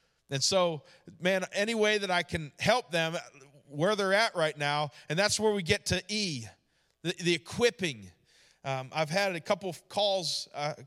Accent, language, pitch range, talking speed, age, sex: American, English, 160-210 Hz, 190 wpm, 40-59, male